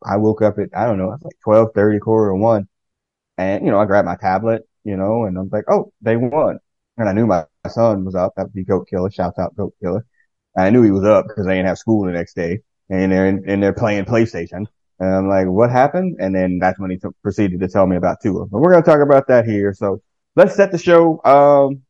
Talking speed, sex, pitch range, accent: 265 wpm, male, 100-120 Hz, American